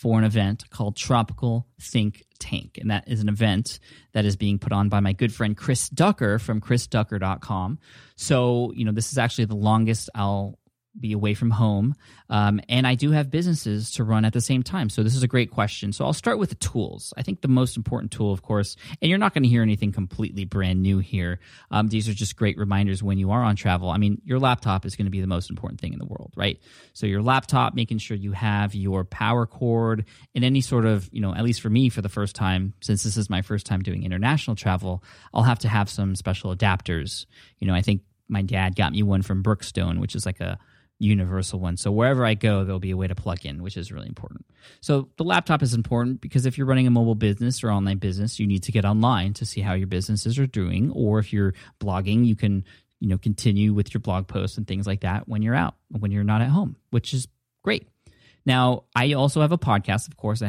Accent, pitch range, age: American, 100-120 Hz, 20-39